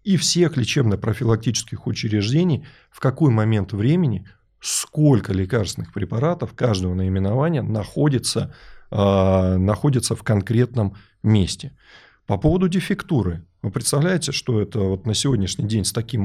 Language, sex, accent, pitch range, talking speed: Russian, male, native, 100-140 Hz, 110 wpm